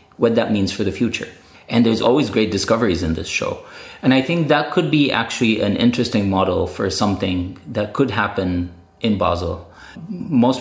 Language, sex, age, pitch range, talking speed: German, male, 30-49, 95-125 Hz, 180 wpm